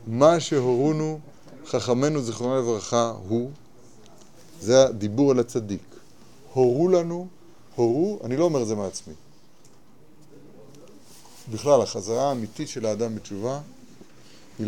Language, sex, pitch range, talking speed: Hebrew, male, 110-145 Hz, 105 wpm